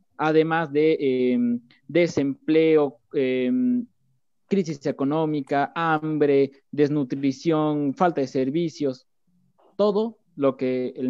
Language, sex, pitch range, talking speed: Spanish, male, 130-165 Hz, 85 wpm